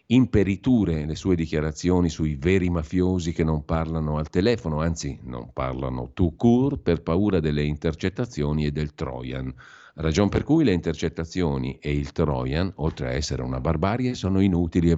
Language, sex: Italian, male